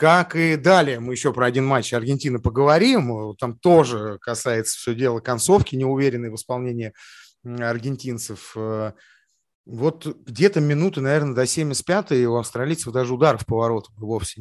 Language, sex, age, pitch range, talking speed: Russian, male, 30-49, 115-155 Hz, 135 wpm